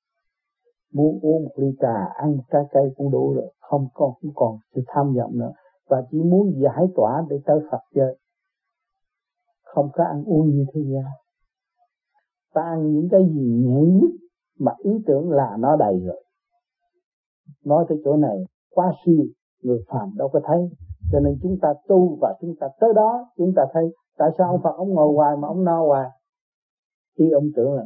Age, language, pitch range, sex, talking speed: 60-79, Vietnamese, 155-240 Hz, male, 190 wpm